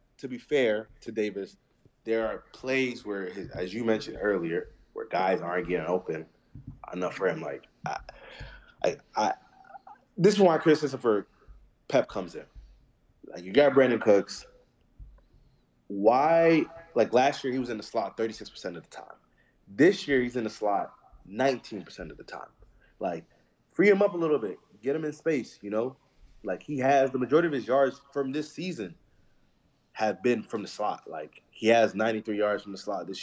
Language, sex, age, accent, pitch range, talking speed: English, male, 20-39, American, 105-145 Hz, 185 wpm